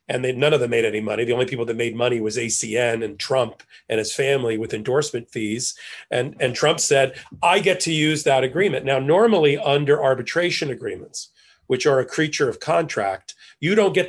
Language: English